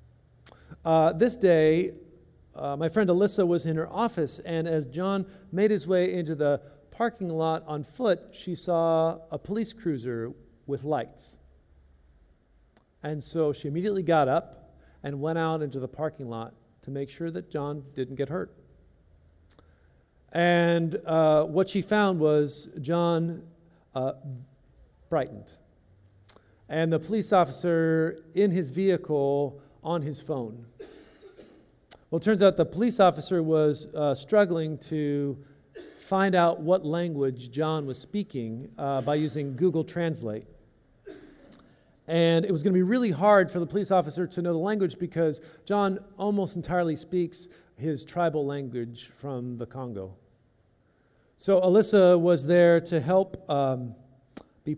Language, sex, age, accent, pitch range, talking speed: English, male, 50-69, American, 130-175 Hz, 140 wpm